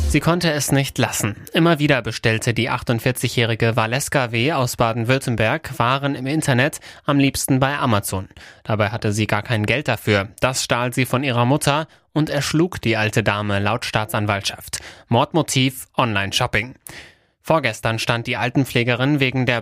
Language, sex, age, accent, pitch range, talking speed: German, male, 30-49, German, 115-140 Hz, 150 wpm